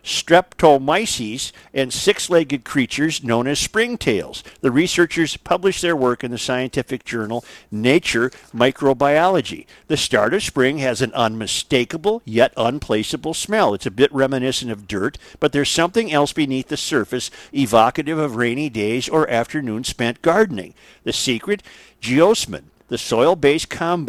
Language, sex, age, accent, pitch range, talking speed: English, male, 50-69, American, 125-170 Hz, 135 wpm